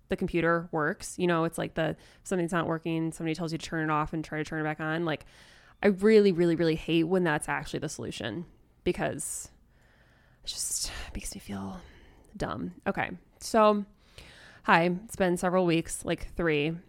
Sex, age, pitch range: female, 20-39, 155-190 Hz